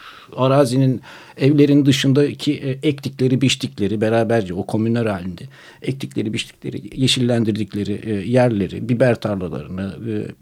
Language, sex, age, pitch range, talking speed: Turkish, male, 60-79, 115-150 Hz, 105 wpm